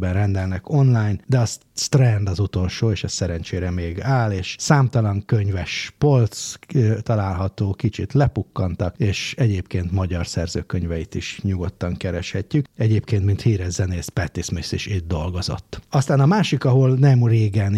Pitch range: 95-120 Hz